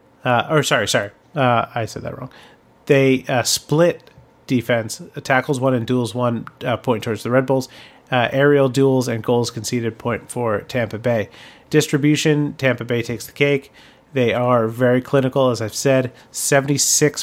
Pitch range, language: 120-140 Hz, English